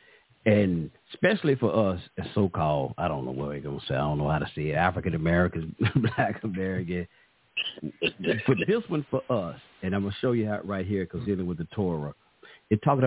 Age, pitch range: 50-69, 85-110 Hz